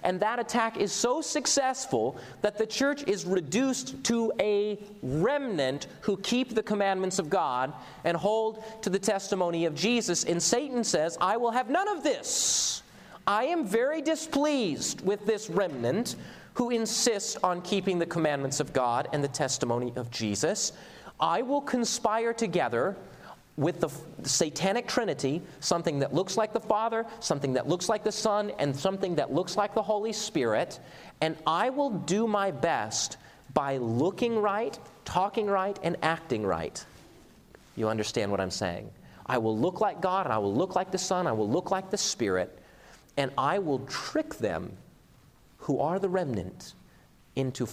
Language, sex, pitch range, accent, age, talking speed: English, male, 155-225 Hz, American, 30-49, 165 wpm